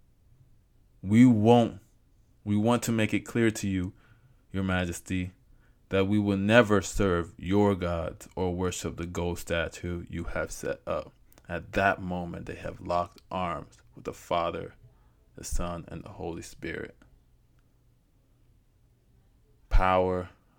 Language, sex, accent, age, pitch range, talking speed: English, male, American, 20-39, 90-115 Hz, 130 wpm